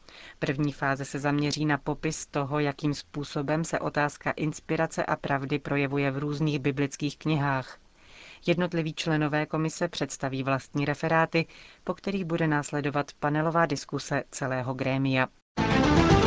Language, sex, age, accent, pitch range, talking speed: Czech, female, 30-49, native, 140-160 Hz, 120 wpm